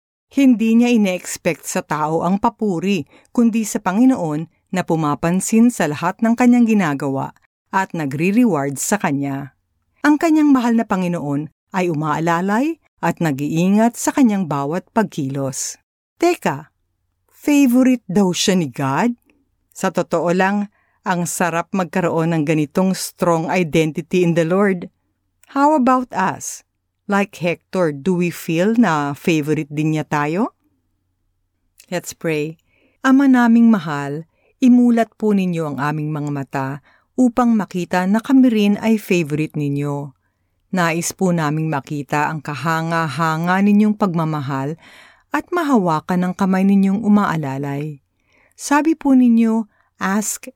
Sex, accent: female, native